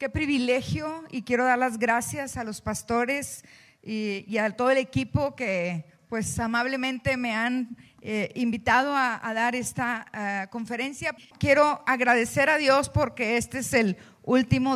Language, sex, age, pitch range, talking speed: Spanish, female, 40-59, 220-270 Hz, 150 wpm